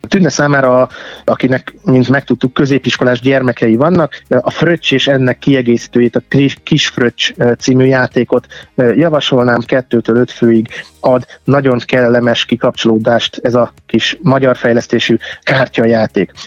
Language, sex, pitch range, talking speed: Hungarian, male, 125-140 Hz, 115 wpm